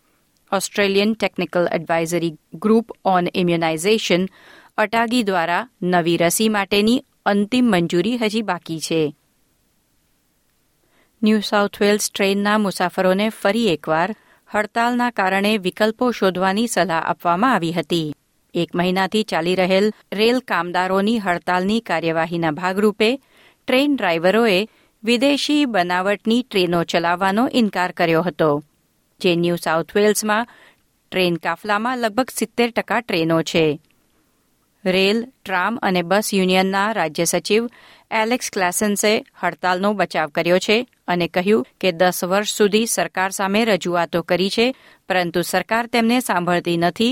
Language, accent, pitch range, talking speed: Gujarati, native, 175-215 Hz, 100 wpm